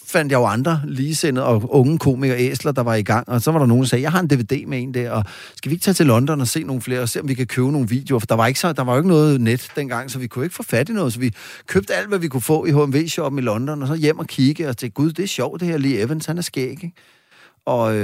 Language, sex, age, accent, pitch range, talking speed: Danish, male, 30-49, native, 115-145 Hz, 325 wpm